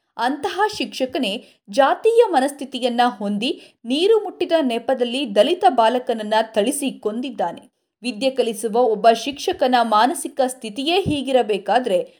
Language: Kannada